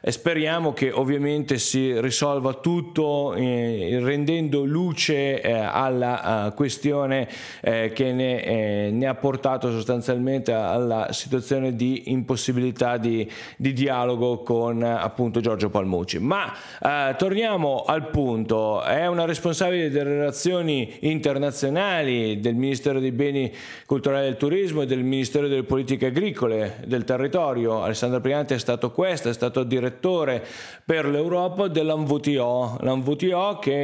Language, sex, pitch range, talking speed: Italian, male, 125-150 Hz, 120 wpm